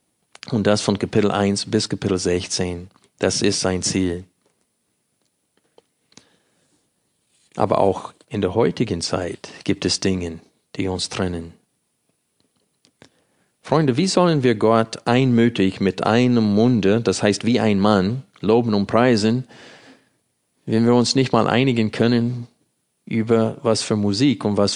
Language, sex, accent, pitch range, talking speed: German, male, German, 95-120 Hz, 130 wpm